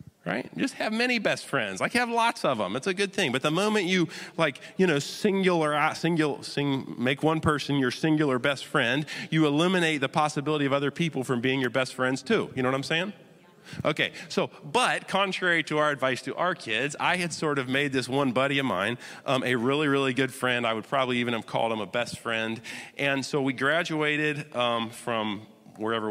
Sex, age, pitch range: male, 30-49, 120-155 Hz